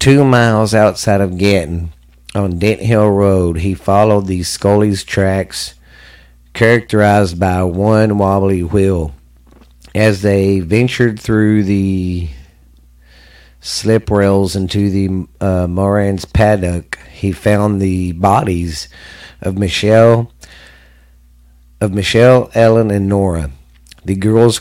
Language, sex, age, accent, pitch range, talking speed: English, male, 50-69, American, 85-105 Hz, 105 wpm